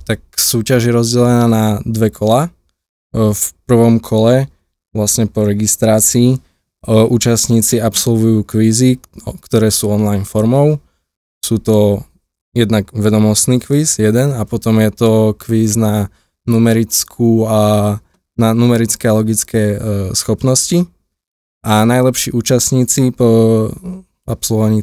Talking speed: 100 wpm